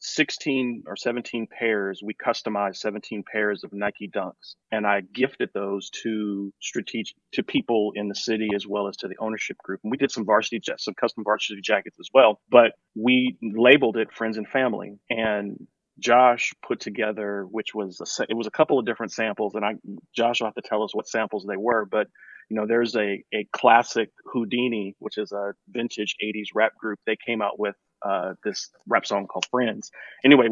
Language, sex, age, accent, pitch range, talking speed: English, male, 30-49, American, 100-115 Hz, 195 wpm